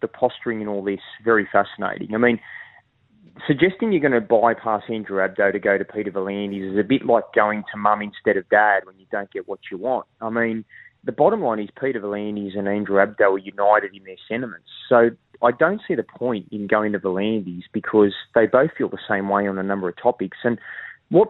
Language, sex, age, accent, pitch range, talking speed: English, male, 20-39, Australian, 100-125 Hz, 220 wpm